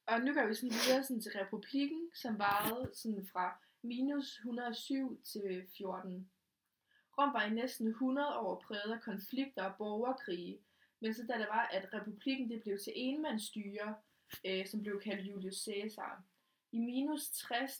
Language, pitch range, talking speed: Danish, 200-255 Hz, 155 wpm